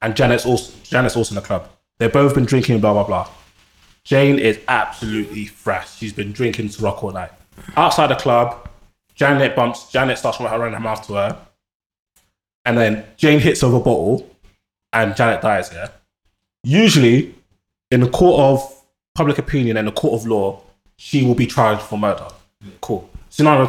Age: 20-39